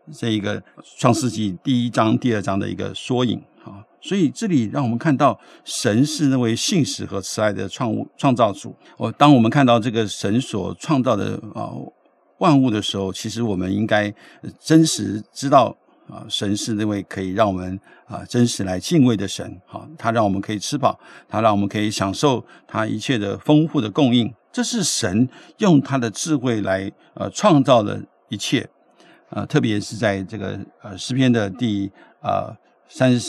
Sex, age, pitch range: male, 60-79, 100-130 Hz